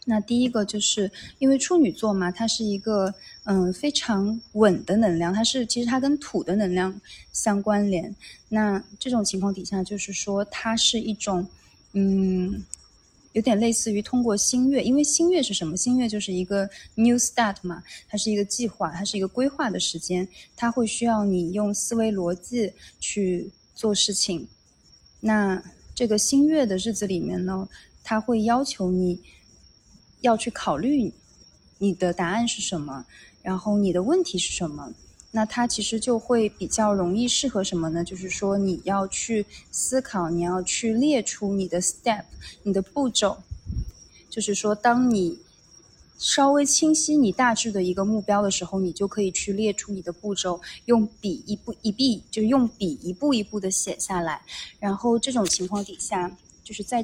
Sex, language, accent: female, Chinese, native